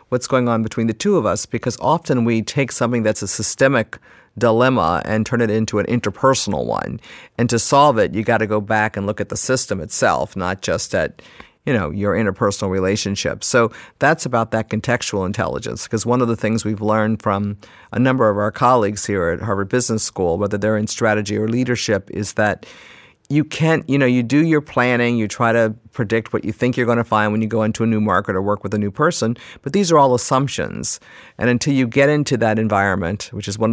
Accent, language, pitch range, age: American, English, 105-120 Hz, 50-69